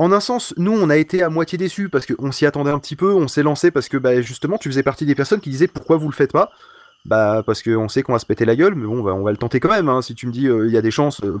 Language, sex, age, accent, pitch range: French, male, 30-49, French, 120-165 Hz